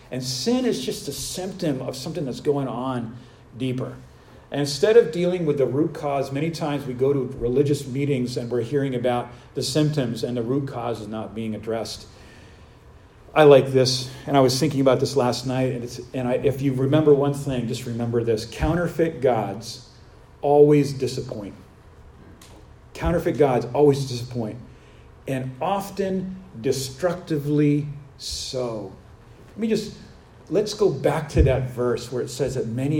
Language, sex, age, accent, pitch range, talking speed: English, male, 40-59, American, 125-155 Hz, 160 wpm